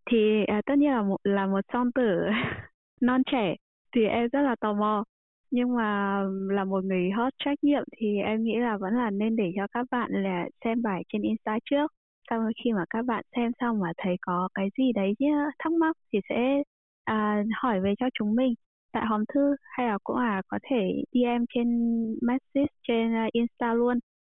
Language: Vietnamese